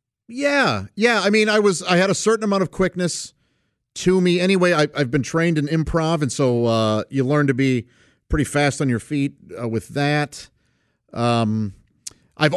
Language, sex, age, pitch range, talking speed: English, male, 50-69, 115-155 Hz, 180 wpm